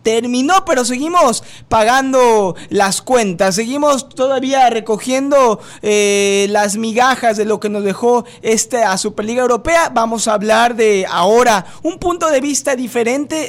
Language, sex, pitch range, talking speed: Spanish, male, 200-250 Hz, 135 wpm